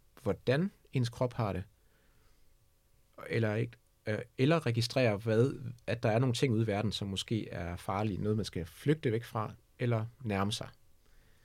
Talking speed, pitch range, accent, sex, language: 150 wpm, 105-125 Hz, native, male, Danish